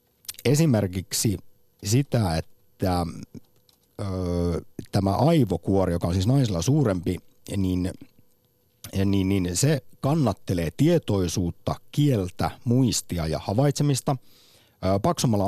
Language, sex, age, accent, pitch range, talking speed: Finnish, male, 50-69, native, 90-120 Hz, 90 wpm